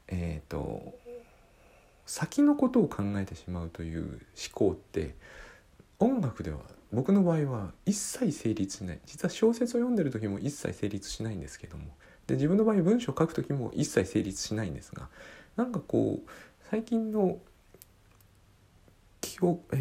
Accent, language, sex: native, Japanese, male